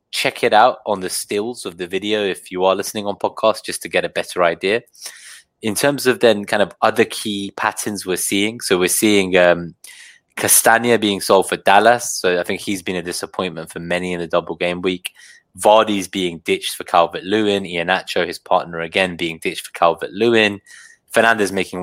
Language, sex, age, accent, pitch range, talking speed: English, male, 20-39, British, 90-105 Hz, 200 wpm